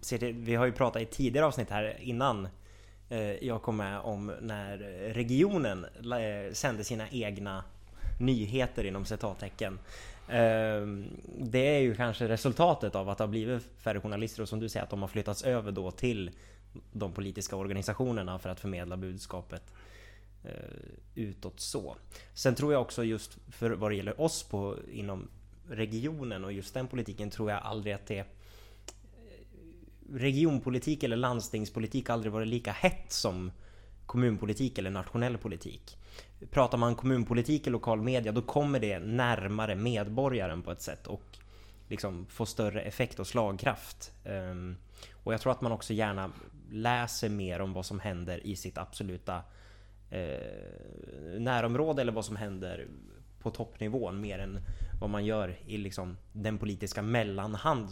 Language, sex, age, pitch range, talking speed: Swedish, male, 20-39, 100-120 Hz, 150 wpm